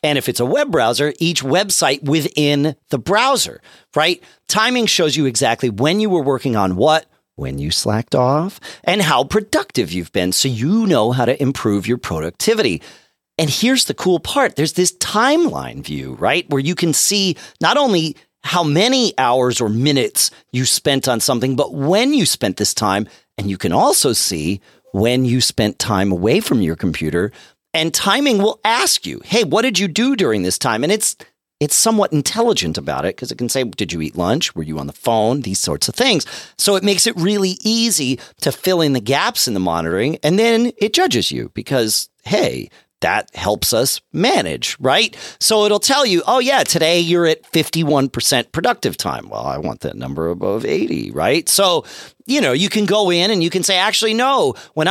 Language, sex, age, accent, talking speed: English, male, 40-59, American, 200 wpm